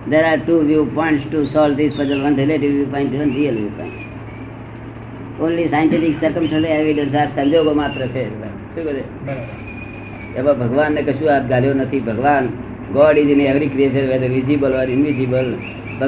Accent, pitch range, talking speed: native, 125-165 Hz, 155 wpm